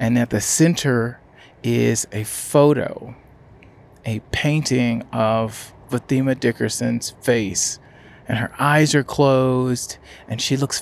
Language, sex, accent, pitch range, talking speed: English, male, American, 105-135 Hz, 115 wpm